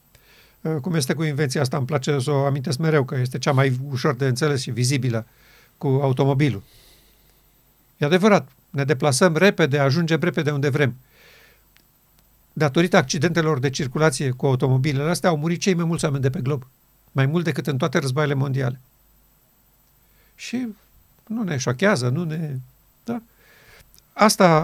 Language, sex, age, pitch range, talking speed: Romanian, male, 50-69, 135-165 Hz, 150 wpm